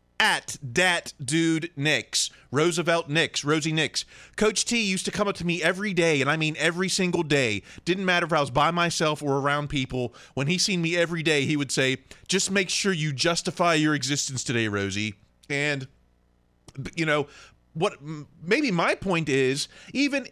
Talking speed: 180 wpm